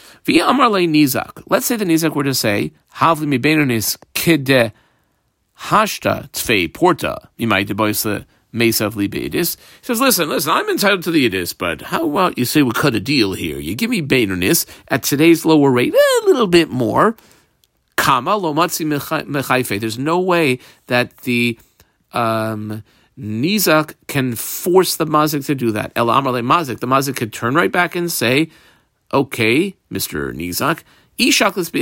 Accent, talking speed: American, 120 wpm